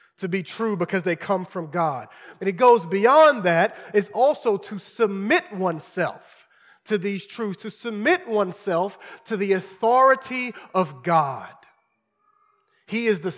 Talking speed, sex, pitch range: 145 wpm, male, 180-230 Hz